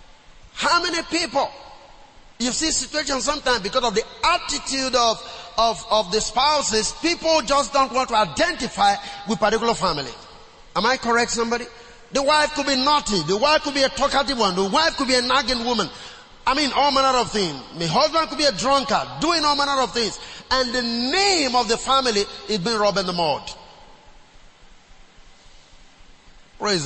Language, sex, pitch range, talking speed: English, male, 215-295 Hz, 170 wpm